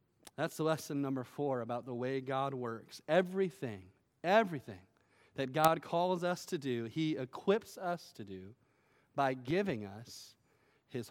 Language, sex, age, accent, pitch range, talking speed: English, male, 30-49, American, 140-210 Hz, 140 wpm